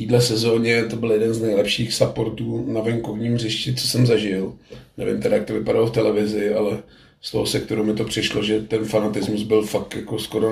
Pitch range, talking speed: 105-120 Hz, 200 wpm